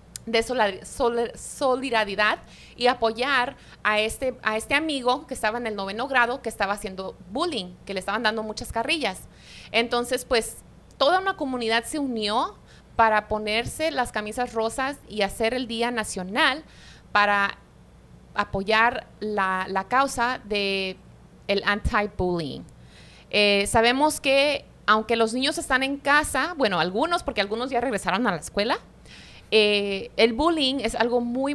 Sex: female